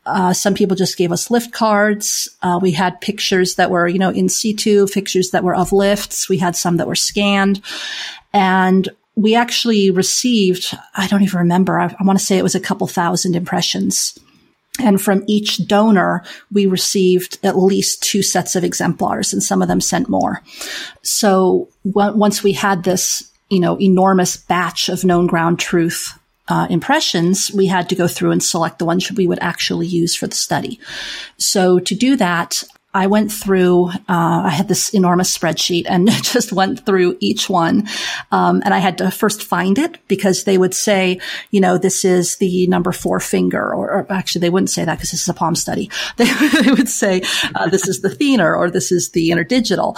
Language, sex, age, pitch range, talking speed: English, female, 40-59, 180-205 Hz, 195 wpm